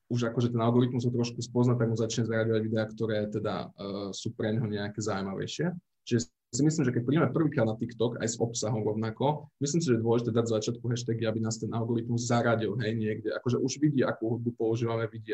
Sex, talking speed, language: male, 220 wpm, Slovak